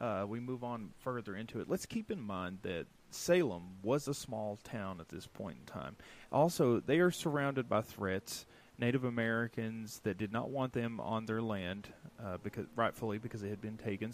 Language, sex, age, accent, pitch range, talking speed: English, male, 30-49, American, 110-160 Hz, 195 wpm